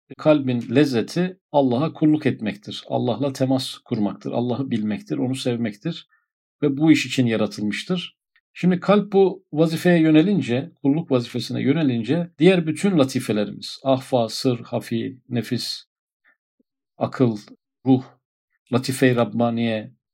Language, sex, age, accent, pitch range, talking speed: Turkish, male, 50-69, native, 120-155 Hz, 105 wpm